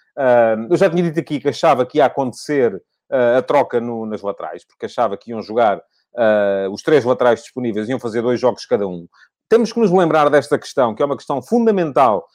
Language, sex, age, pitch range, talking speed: English, male, 30-49, 145-185 Hz, 195 wpm